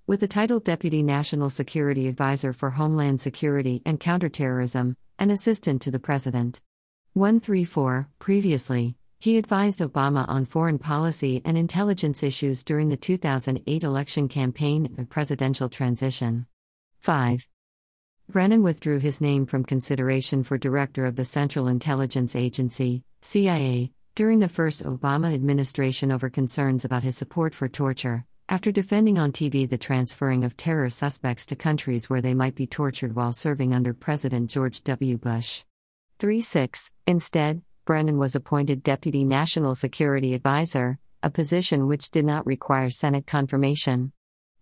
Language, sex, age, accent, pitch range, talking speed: English, female, 50-69, American, 130-155 Hz, 140 wpm